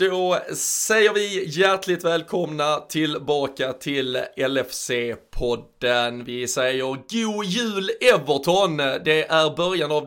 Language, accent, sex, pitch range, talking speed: Swedish, native, male, 130-160 Hz, 100 wpm